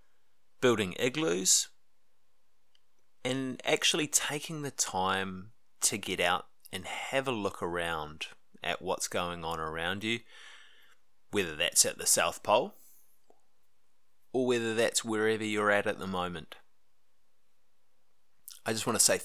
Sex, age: male, 20-39